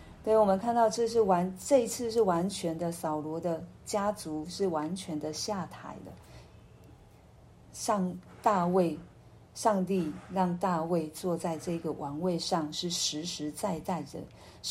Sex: female